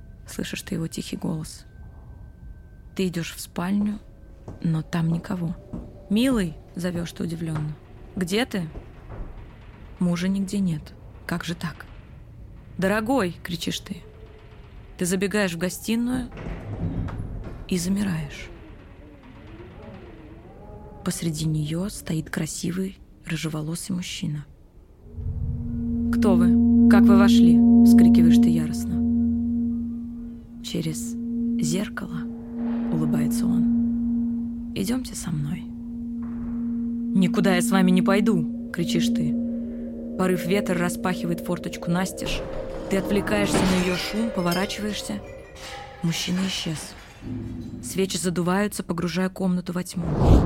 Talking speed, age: 95 wpm, 20-39